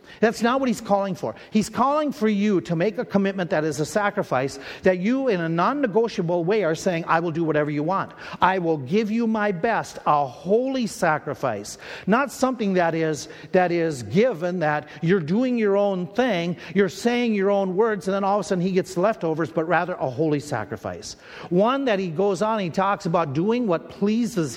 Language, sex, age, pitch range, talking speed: English, male, 50-69, 165-215 Hz, 205 wpm